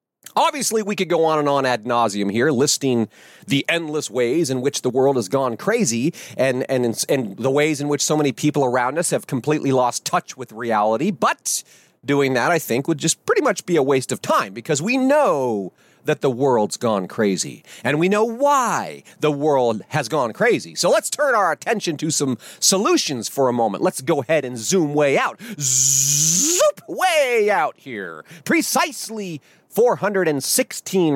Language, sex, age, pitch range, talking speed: English, male, 40-59, 130-175 Hz, 180 wpm